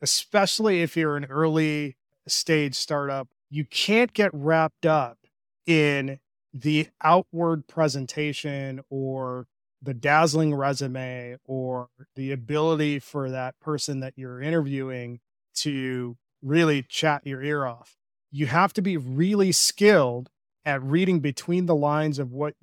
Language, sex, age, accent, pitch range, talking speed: English, male, 30-49, American, 130-160 Hz, 125 wpm